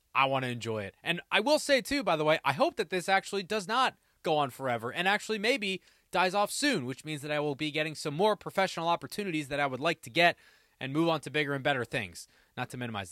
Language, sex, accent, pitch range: English, male, American, 120-170 Hz